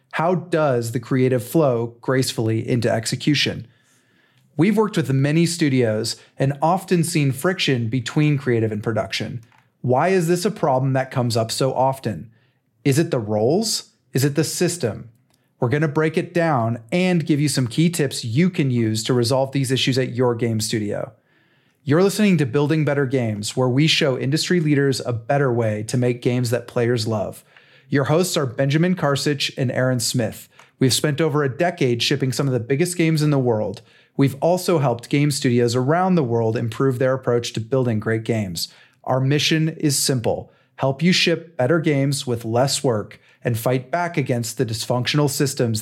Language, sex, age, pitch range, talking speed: English, male, 30-49, 120-155 Hz, 180 wpm